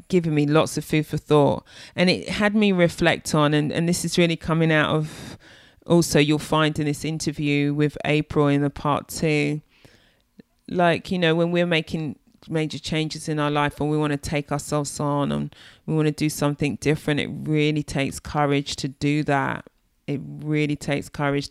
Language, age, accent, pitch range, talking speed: English, 30-49, British, 140-155 Hz, 195 wpm